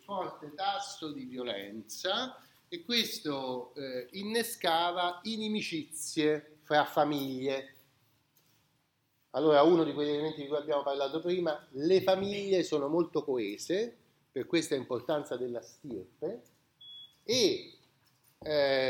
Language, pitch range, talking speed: Italian, 135-190 Hz, 105 wpm